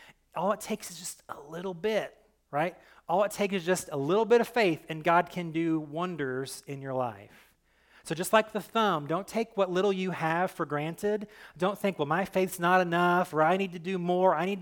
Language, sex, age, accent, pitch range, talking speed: English, male, 30-49, American, 155-195 Hz, 225 wpm